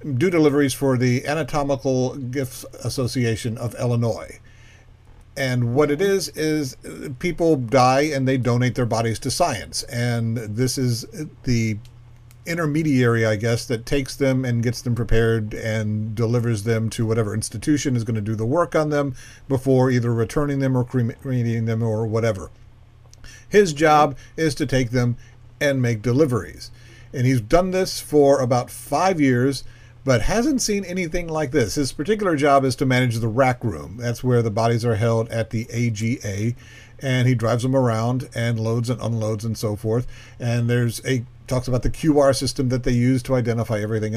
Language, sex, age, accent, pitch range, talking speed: English, male, 50-69, American, 115-140 Hz, 175 wpm